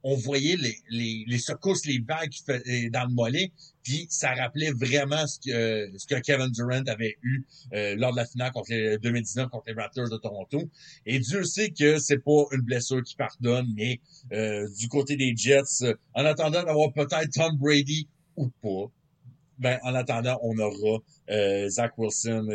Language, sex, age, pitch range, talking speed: French, male, 60-79, 120-160 Hz, 180 wpm